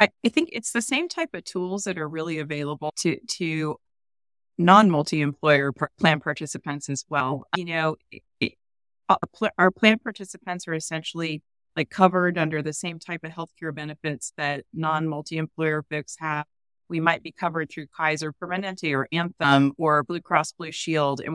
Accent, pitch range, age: American, 145-175 Hz, 30-49